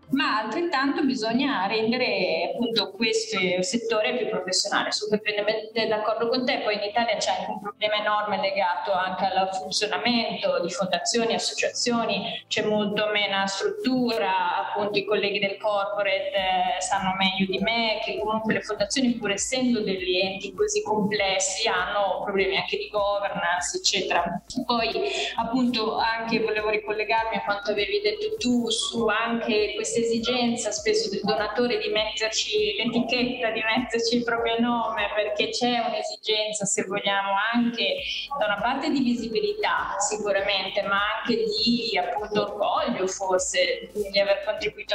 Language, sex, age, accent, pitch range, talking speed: Italian, female, 20-39, native, 195-235 Hz, 140 wpm